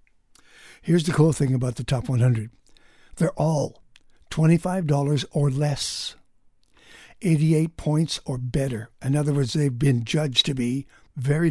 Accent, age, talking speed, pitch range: American, 60-79, 135 wpm, 135-160 Hz